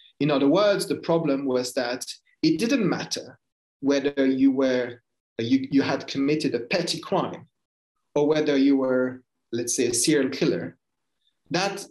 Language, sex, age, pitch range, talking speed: English, male, 40-59, 125-165 Hz, 150 wpm